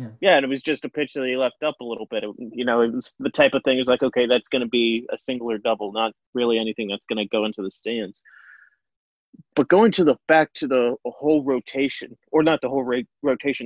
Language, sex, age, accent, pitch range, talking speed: English, male, 30-49, American, 125-155 Hz, 250 wpm